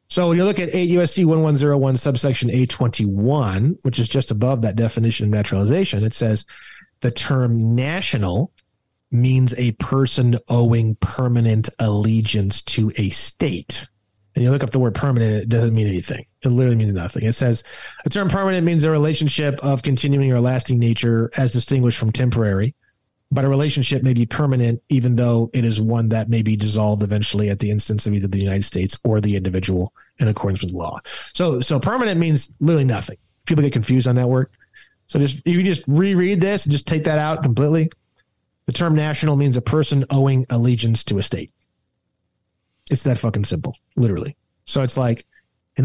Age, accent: 30-49, American